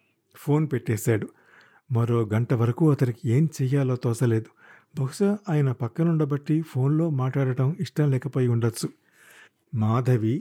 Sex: male